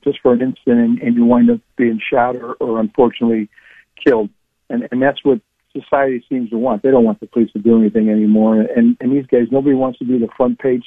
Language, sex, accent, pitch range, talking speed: English, male, American, 115-135 Hz, 235 wpm